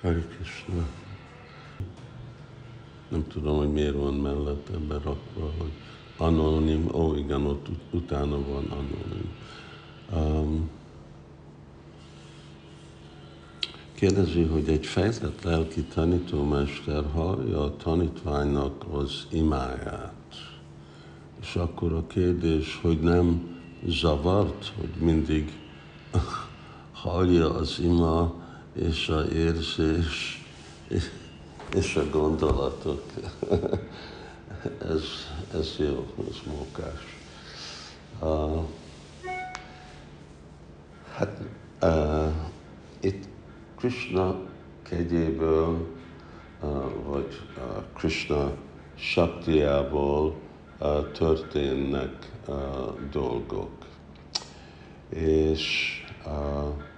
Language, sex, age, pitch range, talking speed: Hungarian, male, 60-79, 70-85 Hz, 75 wpm